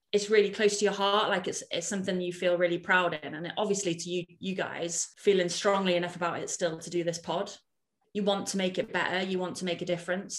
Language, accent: English, British